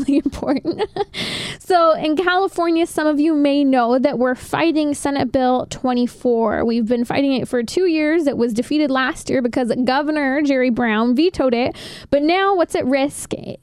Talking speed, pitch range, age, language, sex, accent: 165 wpm, 245-320 Hz, 10-29, English, female, American